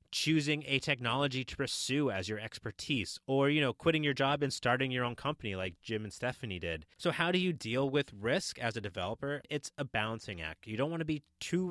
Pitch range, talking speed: 105-150 Hz, 225 wpm